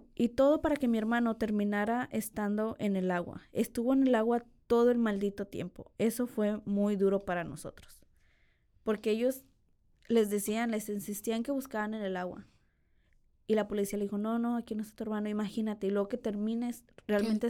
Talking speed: 185 wpm